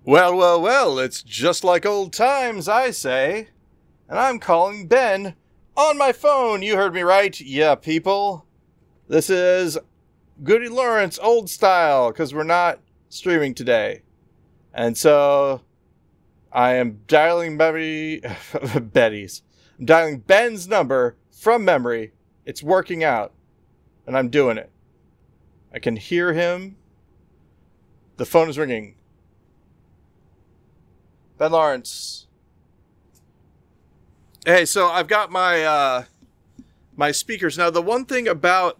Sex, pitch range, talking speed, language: male, 125-190 Hz, 120 wpm, English